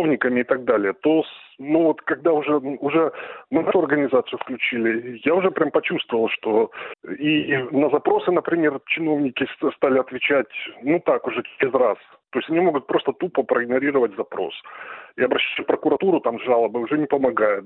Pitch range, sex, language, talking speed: 130-165 Hz, male, Russian, 165 wpm